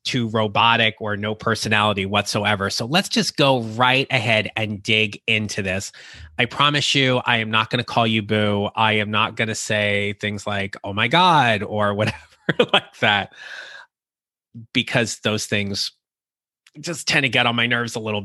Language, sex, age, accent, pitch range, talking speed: English, male, 30-49, American, 105-125 Hz, 180 wpm